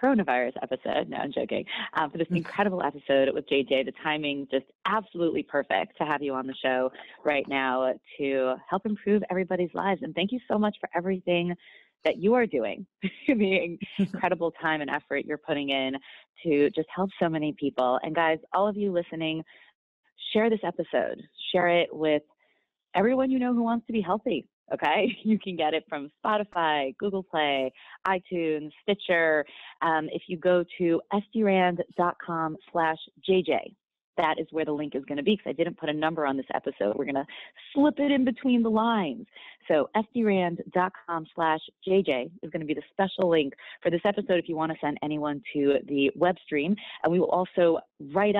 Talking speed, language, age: 185 wpm, English, 20-39